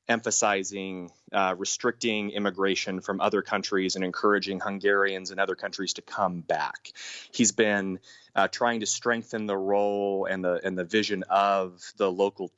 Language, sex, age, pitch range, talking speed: English, male, 30-49, 95-115 Hz, 155 wpm